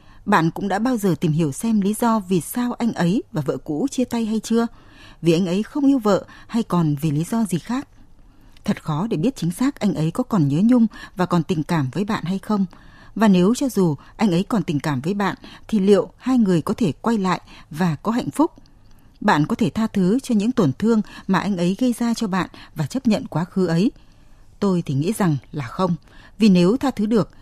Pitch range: 165-225 Hz